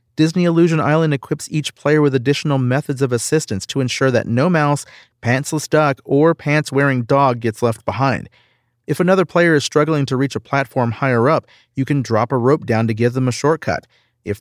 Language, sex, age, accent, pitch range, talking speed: English, male, 40-59, American, 115-145 Hz, 195 wpm